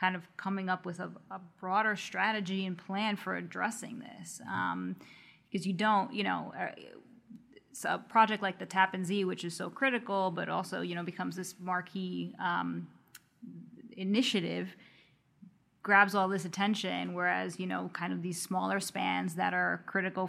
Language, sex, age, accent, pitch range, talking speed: English, female, 20-39, American, 165-190 Hz, 160 wpm